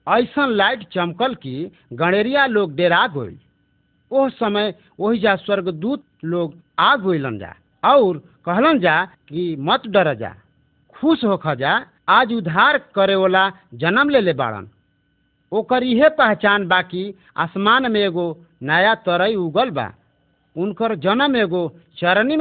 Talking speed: 120 wpm